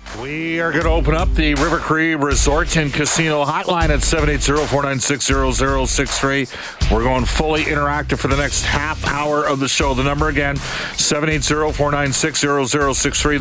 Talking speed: 140 wpm